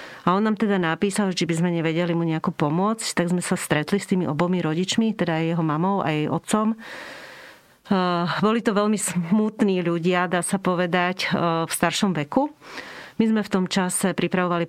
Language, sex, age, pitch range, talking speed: Slovak, female, 40-59, 165-195 Hz, 175 wpm